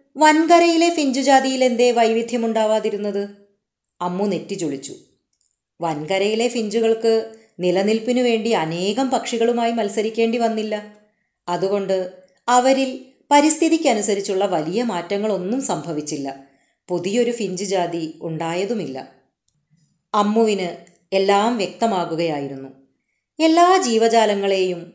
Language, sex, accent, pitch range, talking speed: Malayalam, female, native, 175-230 Hz, 70 wpm